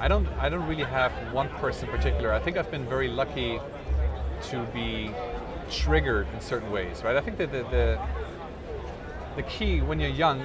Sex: male